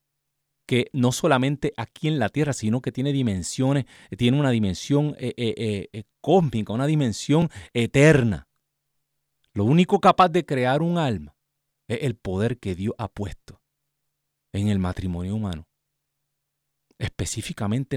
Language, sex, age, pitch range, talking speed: Spanish, male, 40-59, 115-145 Hz, 135 wpm